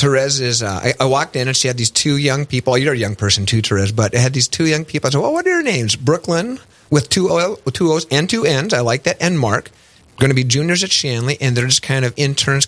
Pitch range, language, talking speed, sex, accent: 115-145 Hz, English, 280 wpm, male, American